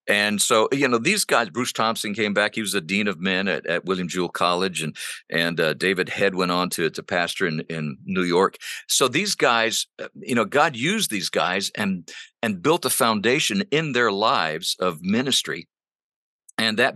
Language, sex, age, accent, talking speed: English, male, 50-69, American, 200 wpm